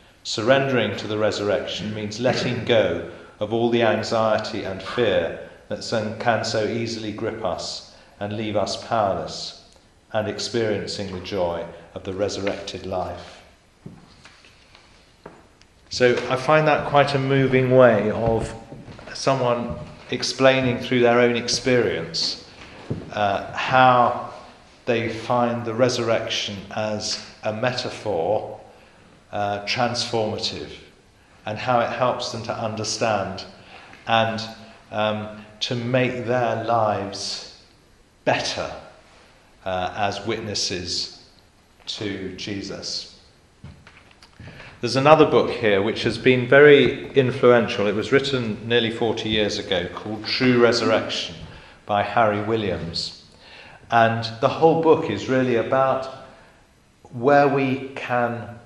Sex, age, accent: male, 40-59, British